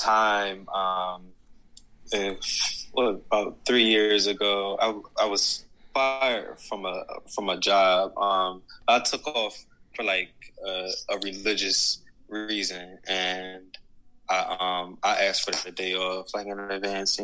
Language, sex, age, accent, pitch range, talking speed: English, male, 20-39, American, 95-100 Hz, 135 wpm